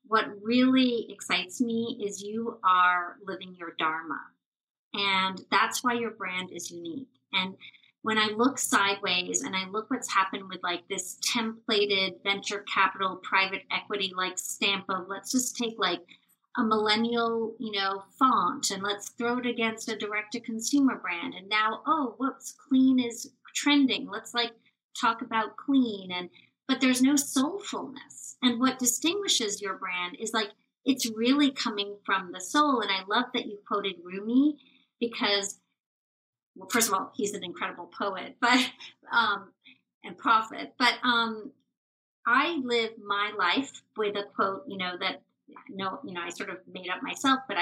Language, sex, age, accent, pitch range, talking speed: English, female, 30-49, American, 190-245 Hz, 165 wpm